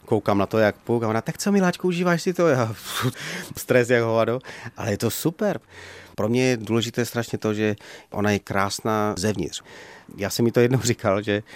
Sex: male